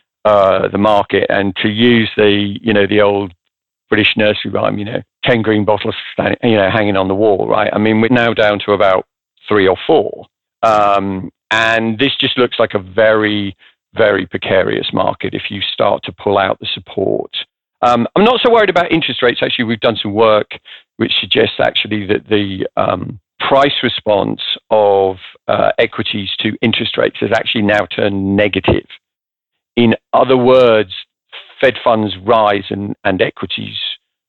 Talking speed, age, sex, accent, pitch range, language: 170 wpm, 50-69, male, British, 100-115 Hz, English